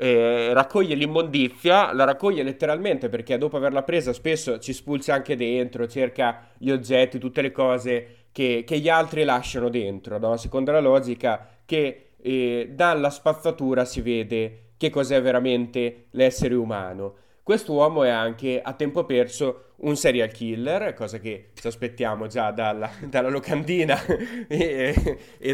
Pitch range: 120-150 Hz